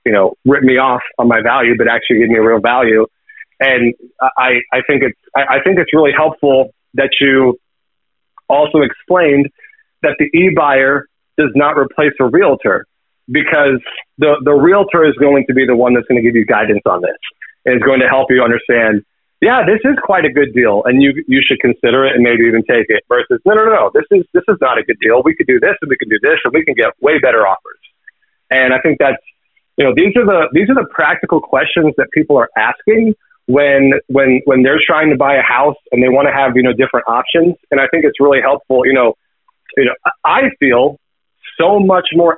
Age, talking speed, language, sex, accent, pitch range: 30-49, 225 wpm, English, male, American, 130-175 Hz